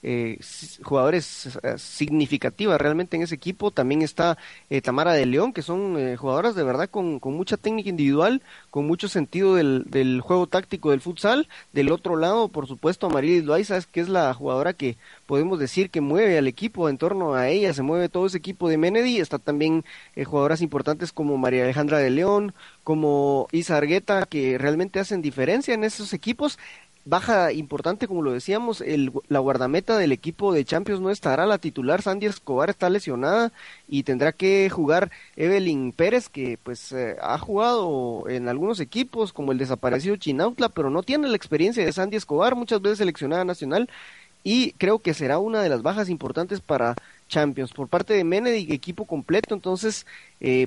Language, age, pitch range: Spanish, 30-49, 140-200 Hz